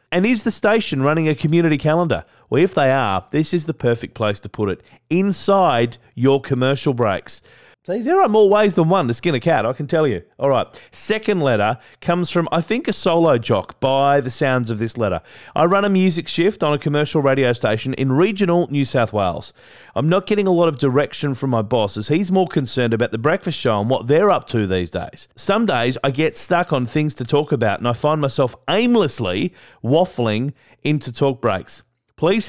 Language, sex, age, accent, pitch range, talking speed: English, male, 30-49, Australian, 120-170 Hz, 215 wpm